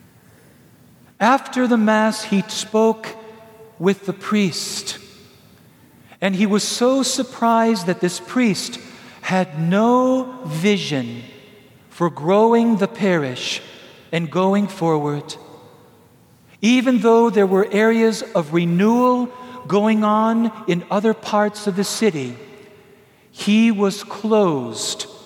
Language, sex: English, male